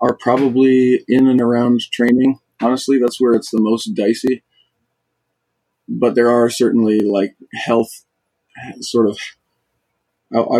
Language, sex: English, male